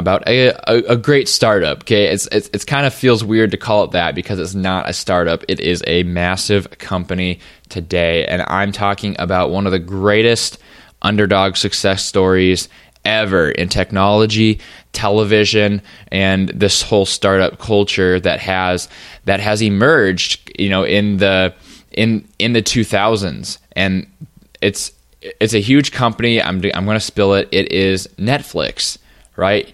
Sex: male